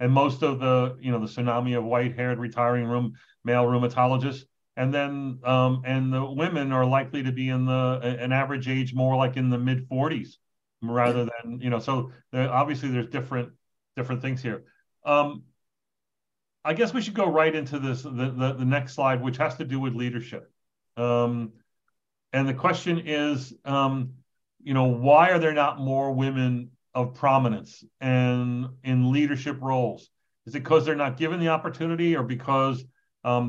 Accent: American